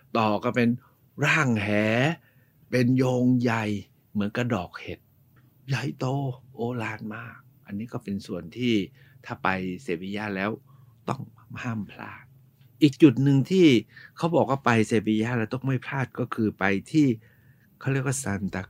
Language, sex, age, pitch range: Thai, male, 60-79, 110-135 Hz